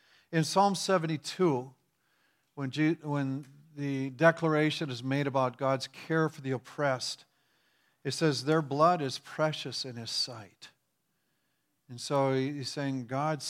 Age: 50-69